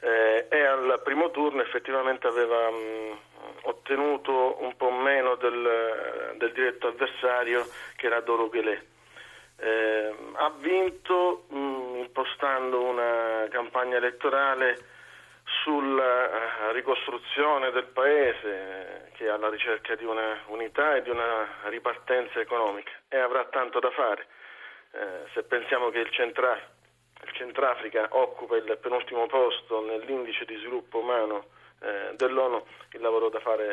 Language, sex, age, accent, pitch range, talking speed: Italian, male, 40-59, native, 110-135 Hz, 130 wpm